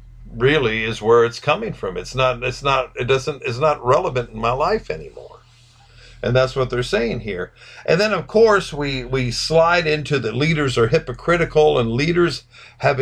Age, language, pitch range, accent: 50-69, English, 120-160 Hz, American